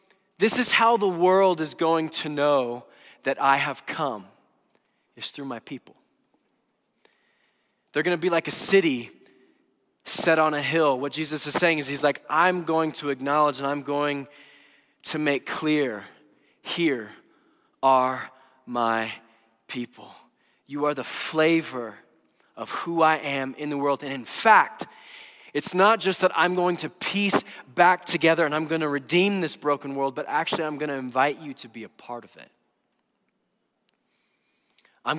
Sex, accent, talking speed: male, American, 160 wpm